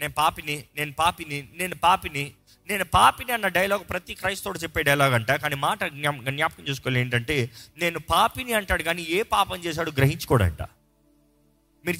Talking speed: 145 wpm